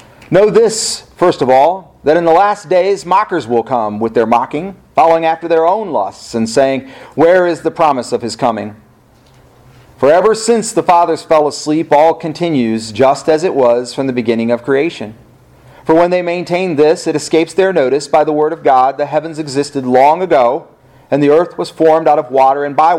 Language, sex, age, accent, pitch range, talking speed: English, male, 40-59, American, 130-175 Hz, 200 wpm